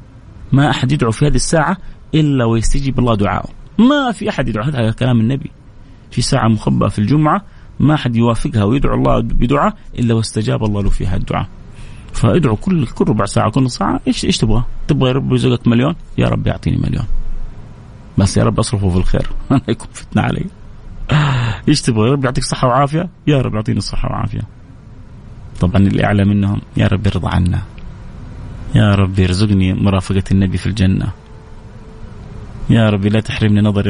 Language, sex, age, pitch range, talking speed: English, male, 30-49, 105-135 Hz, 160 wpm